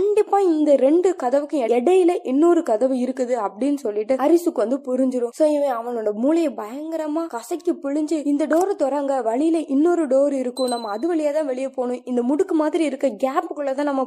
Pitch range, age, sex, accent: 240-310 Hz, 20-39, female, native